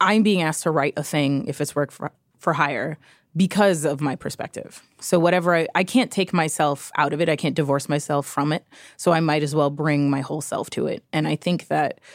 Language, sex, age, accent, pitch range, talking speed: English, female, 20-39, American, 145-185 Hz, 230 wpm